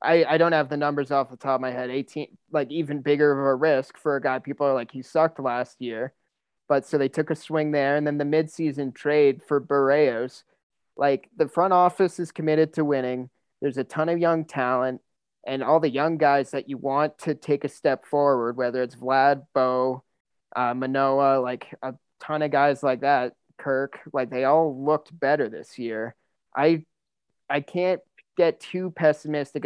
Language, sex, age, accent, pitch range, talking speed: English, male, 30-49, American, 135-155 Hz, 195 wpm